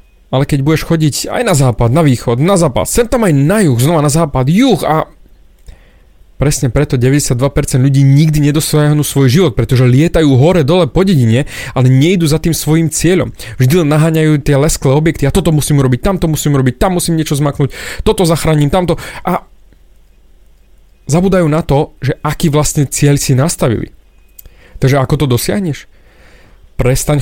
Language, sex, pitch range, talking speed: Slovak, male, 120-150 Hz, 165 wpm